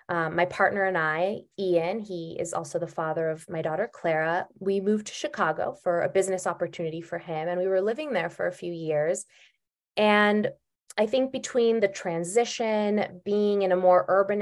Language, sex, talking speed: English, female, 185 wpm